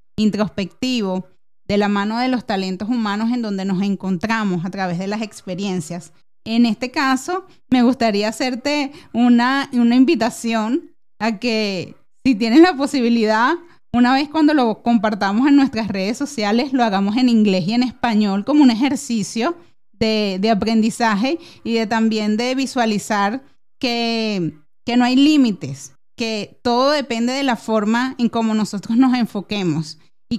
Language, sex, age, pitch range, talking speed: Spanish, female, 30-49, 210-250 Hz, 150 wpm